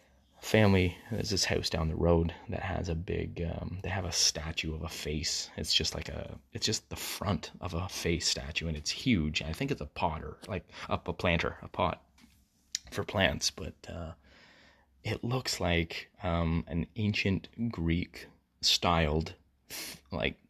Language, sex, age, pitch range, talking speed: English, male, 20-39, 80-95 Hz, 175 wpm